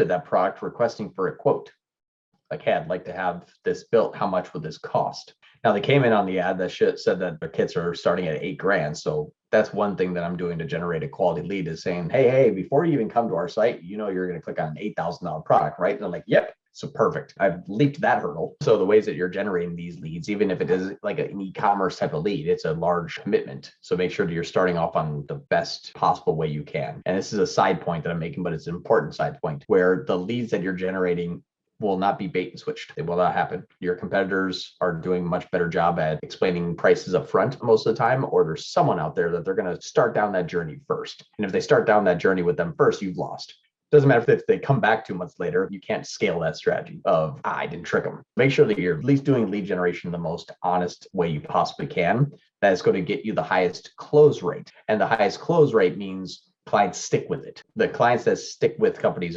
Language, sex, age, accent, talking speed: English, male, 30-49, American, 255 wpm